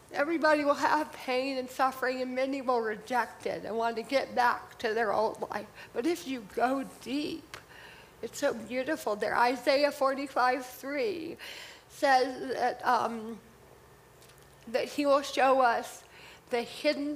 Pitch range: 245-290 Hz